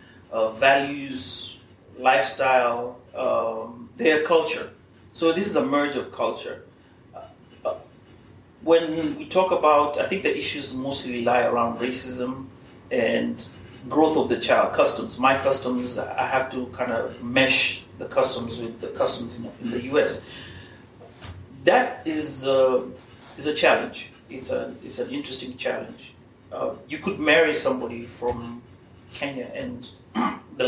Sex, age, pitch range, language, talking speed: male, 30-49, 120-145 Hz, Swahili, 140 wpm